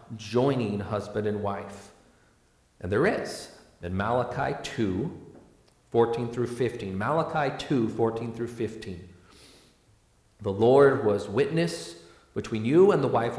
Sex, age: male, 40-59